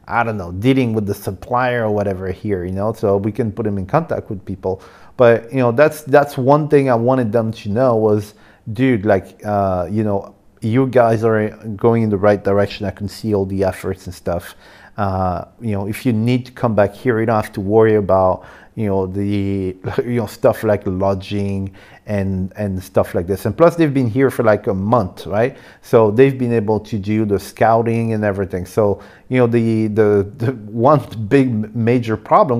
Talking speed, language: 210 wpm, English